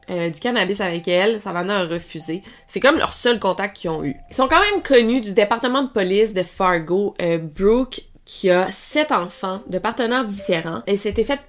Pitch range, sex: 185-235 Hz, female